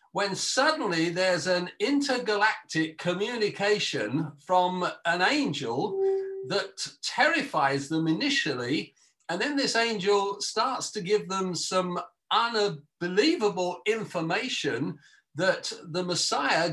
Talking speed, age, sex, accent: 95 wpm, 50-69, male, British